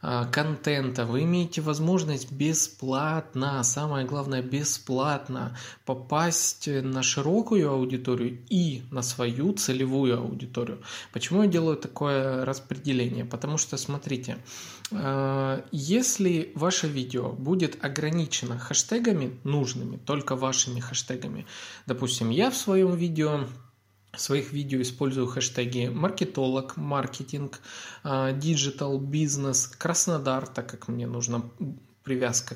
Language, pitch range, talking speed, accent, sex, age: Russian, 125-160 Hz, 100 wpm, native, male, 20-39